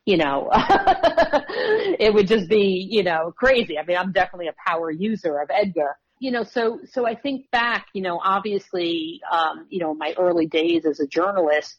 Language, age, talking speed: English, 50-69, 190 wpm